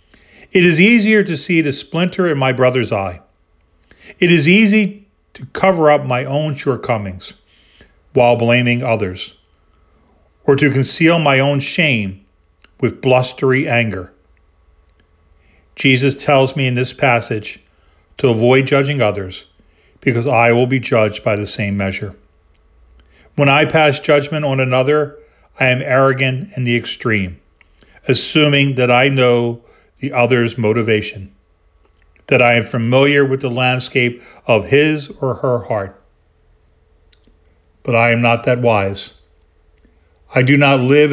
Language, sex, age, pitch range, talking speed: English, male, 40-59, 90-135 Hz, 135 wpm